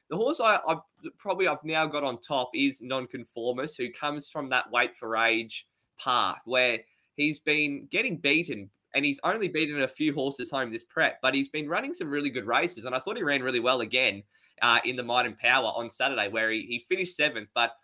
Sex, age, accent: male, 20-39, Australian